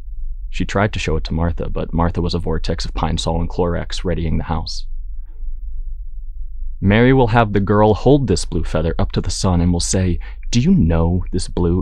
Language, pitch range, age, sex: English, 75-95 Hz, 30-49, male